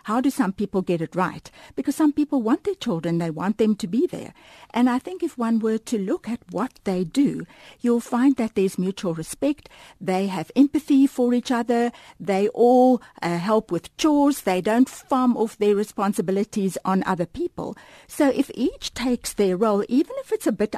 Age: 60-79